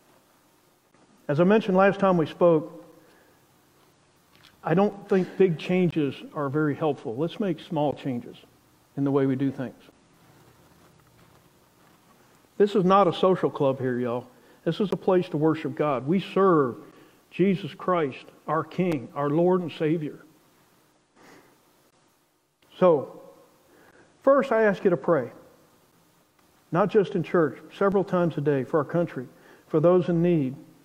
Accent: American